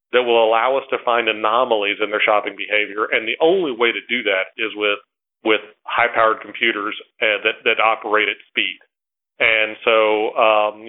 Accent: American